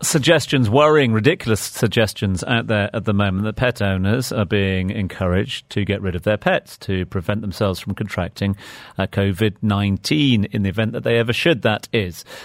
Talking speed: 175 wpm